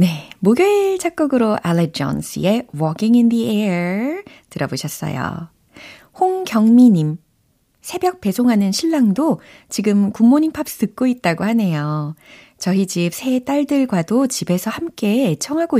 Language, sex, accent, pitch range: Korean, female, native, 160-240 Hz